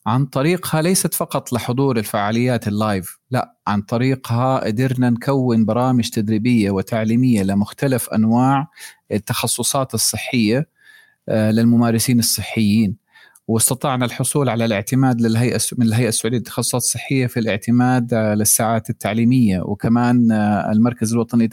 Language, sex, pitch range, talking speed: Arabic, male, 115-140 Hz, 105 wpm